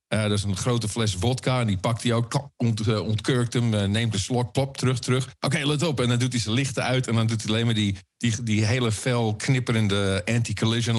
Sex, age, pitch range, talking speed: male, 50-69, 100-130 Hz, 255 wpm